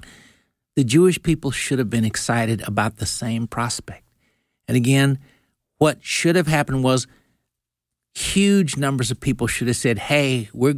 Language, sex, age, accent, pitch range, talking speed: English, male, 50-69, American, 125-165 Hz, 150 wpm